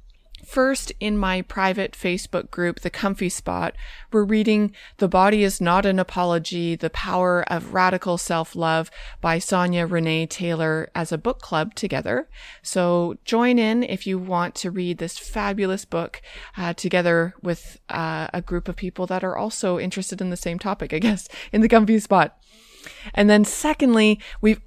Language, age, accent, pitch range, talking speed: English, 20-39, American, 170-200 Hz, 165 wpm